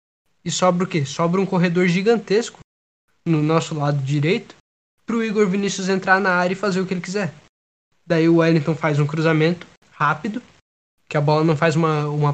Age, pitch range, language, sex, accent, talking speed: 10-29, 145-170 Hz, Portuguese, male, Brazilian, 190 wpm